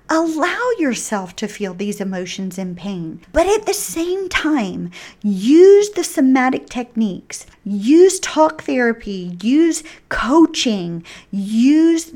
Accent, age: American, 40-59